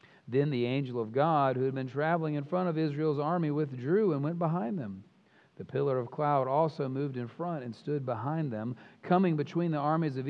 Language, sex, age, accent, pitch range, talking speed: English, male, 40-59, American, 120-165 Hz, 210 wpm